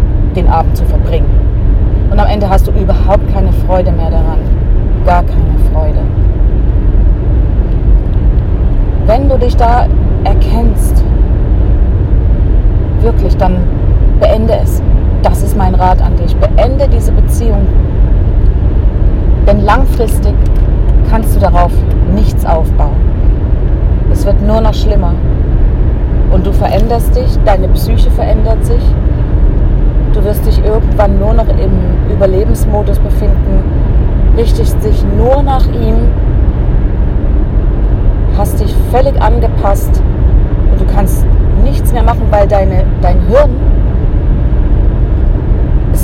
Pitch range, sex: 85-100 Hz, female